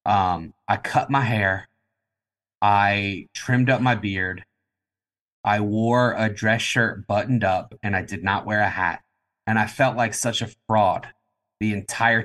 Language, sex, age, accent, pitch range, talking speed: English, male, 30-49, American, 95-115 Hz, 160 wpm